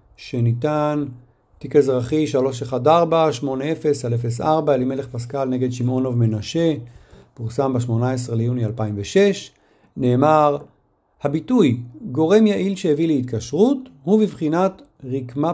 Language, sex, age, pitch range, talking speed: Hebrew, male, 50-69, 125-175 Hz, 85 wpm